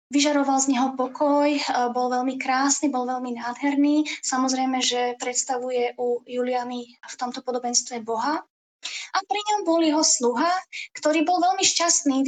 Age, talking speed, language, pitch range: 20-39, 145 wpm, Slovak, 260-315 Hz